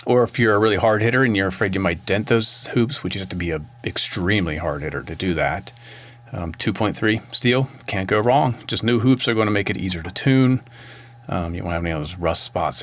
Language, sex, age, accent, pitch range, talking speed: English, male, 40-59, American, 95-120 Hz, 250 wpm